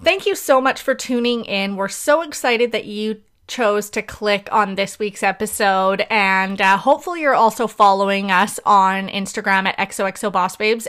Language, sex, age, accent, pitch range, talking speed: English, female, 20-39, American, 195-235 Hz, 165 wpm